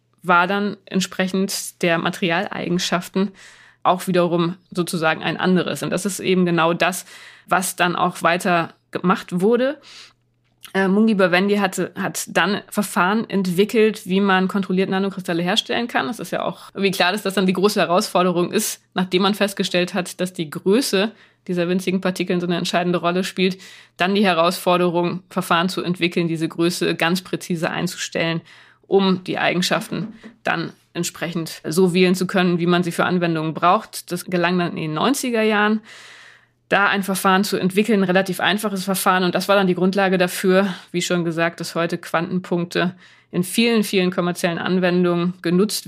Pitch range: 175-195 Hz